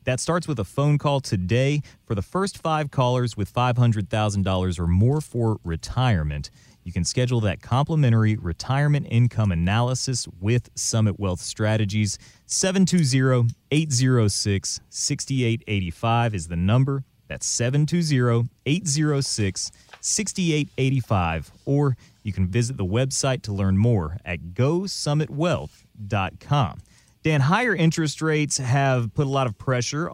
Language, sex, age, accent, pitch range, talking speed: English, male, 30-49, American, 105-150 Hz, 115 wpm